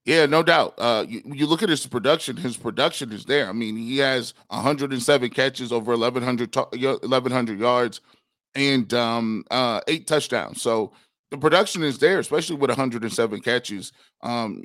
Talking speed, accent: 160 wpm, American